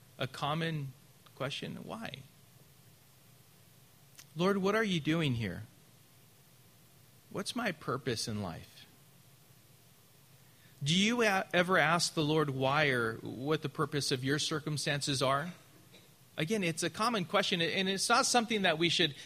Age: 40-59